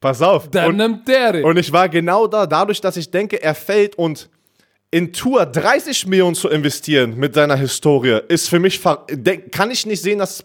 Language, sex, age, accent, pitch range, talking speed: German, male, 20-39, German, 150-190 Hz, 190 wpm